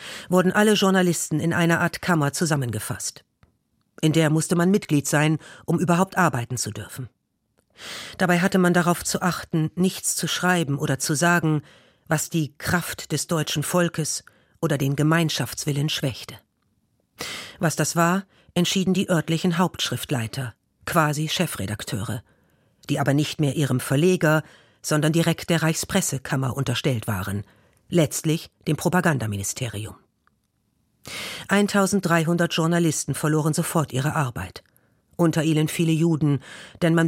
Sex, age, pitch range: female, 50-69, 140-170 Hz